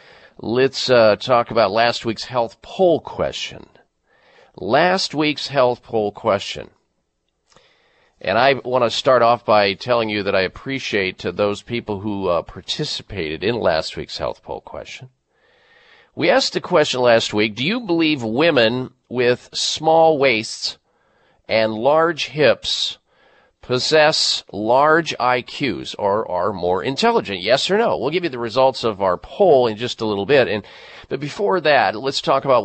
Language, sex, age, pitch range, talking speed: English, male, 40-59, 110-160 Hz, 155 wpm